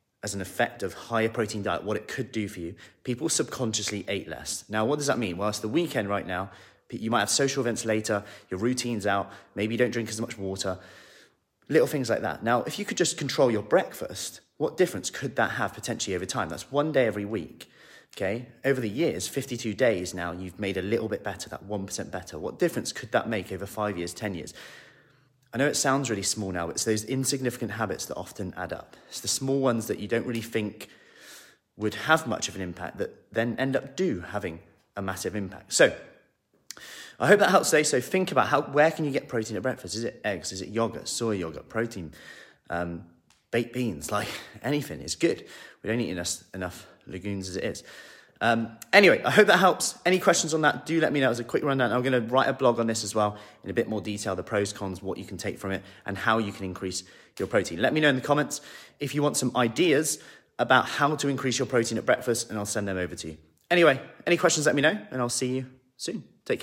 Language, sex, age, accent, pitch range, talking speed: English, male, 30-49, British, 95-130 Hz, 240 wpm